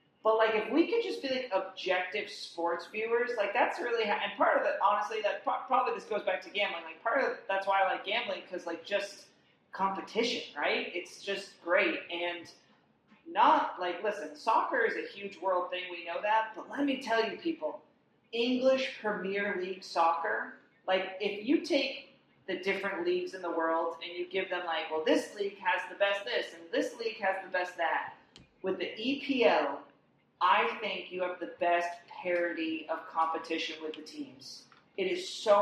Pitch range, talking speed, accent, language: 175-220 Hz, 195 wpm, American, English